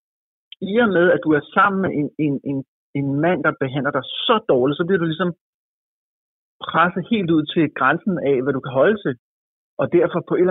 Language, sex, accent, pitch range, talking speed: Danish, male, native, 140-175 Hz, 215 wpm